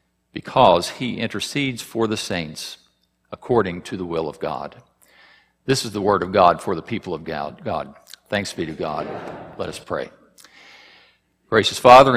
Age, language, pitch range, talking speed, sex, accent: 50-69, English, 90-120 Hz, 165 wpm, male, American